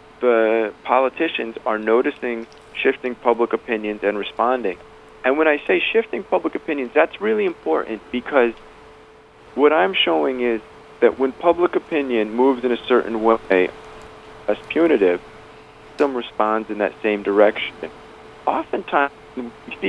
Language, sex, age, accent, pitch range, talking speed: English, male, 40-59, American, 110-140 Hz, 125 wpm